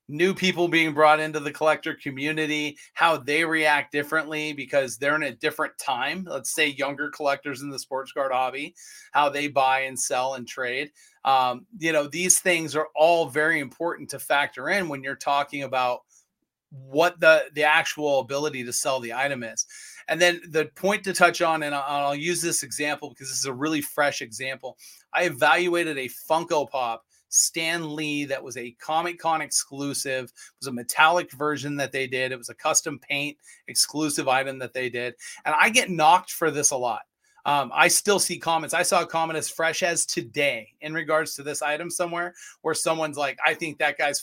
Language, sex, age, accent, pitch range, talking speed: English, male, 30-49, American, 140-170 Hz, 195 wpm